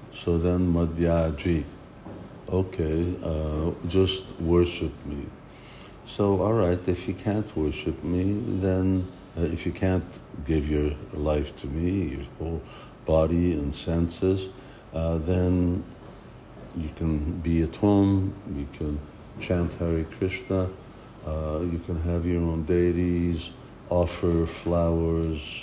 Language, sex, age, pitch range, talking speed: English, male, 60-79, 80-90 Hz, 120 wpm